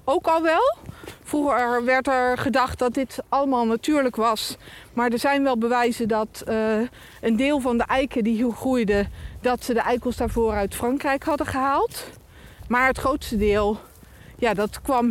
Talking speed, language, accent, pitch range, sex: 170 wpm, Dutch, Dutch, 215-255 Hz, female